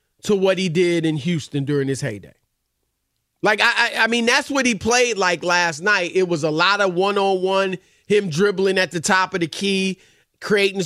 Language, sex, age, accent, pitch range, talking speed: English, male, 30-49, American, 180-230 Hz, 210 wpm